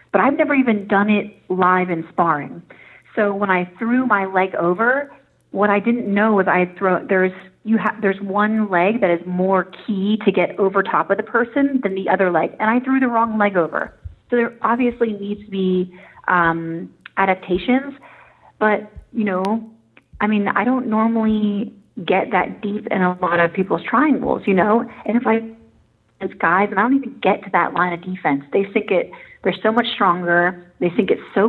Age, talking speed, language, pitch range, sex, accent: 30-49, 200 wpm, English, 175-220 Hz, female, American